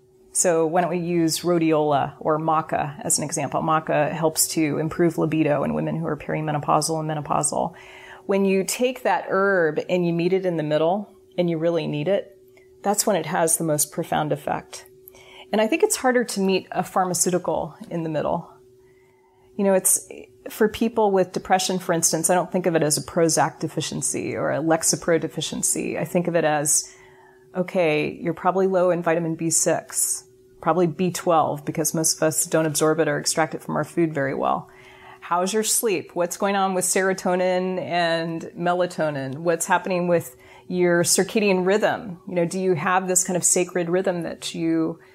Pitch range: 155-190 Hz